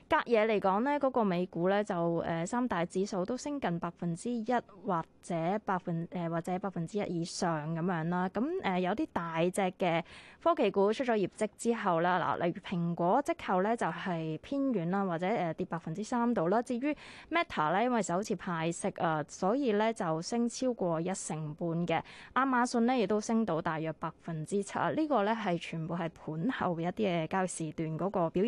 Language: Chinese